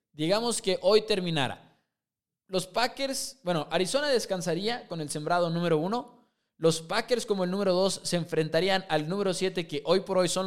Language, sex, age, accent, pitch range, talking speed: English, male, 20-39, Mexican, 160-215 Hz, 170 wpm